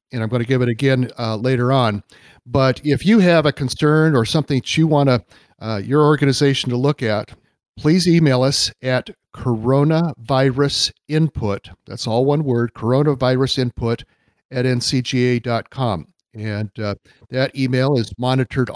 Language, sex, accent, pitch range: English, male, American, 120-140 Hz